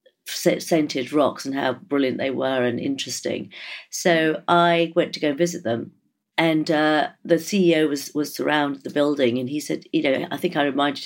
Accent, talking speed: British, 185 wpm